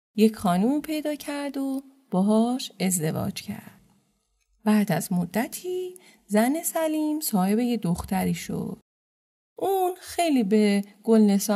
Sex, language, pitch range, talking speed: female, Persian, 195-270 Hz, 110 wpm